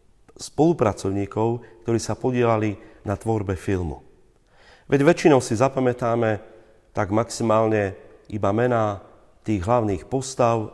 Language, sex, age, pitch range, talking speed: Slovak, male, 40-59, 100-125 Hz, 100 wpm